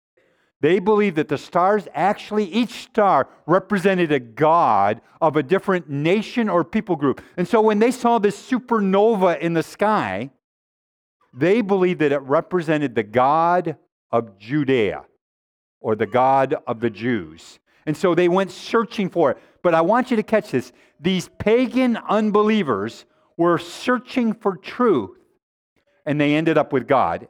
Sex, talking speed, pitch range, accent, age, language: male, 155 wpm, 145-215 Hz, American, 50-69, English